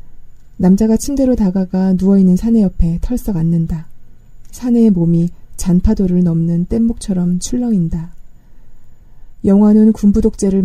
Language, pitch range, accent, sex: Korean, 175-210 Hz, native, female